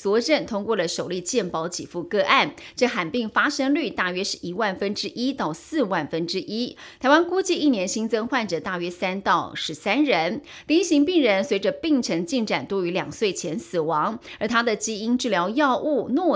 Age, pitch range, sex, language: 30-49, 190-270 Hz, female, Chinese